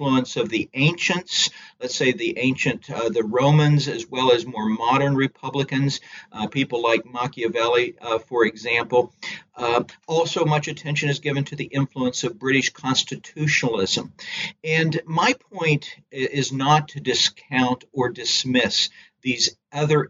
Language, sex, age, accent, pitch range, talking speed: English, male, 50-69, American, 130-165 Hz, 135 wpm